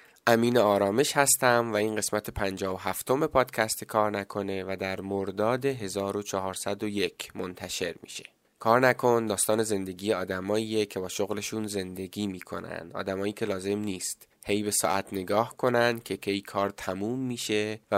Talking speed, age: 145 wpm, 20-39